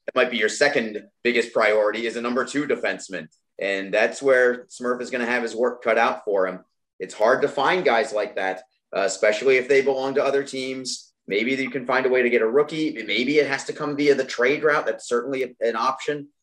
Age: 30-49